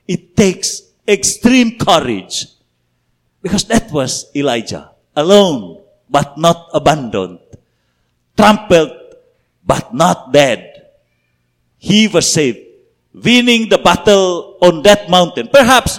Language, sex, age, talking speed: English, male, 50-69, 100 wpm